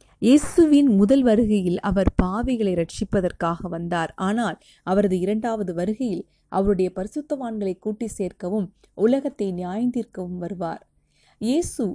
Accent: native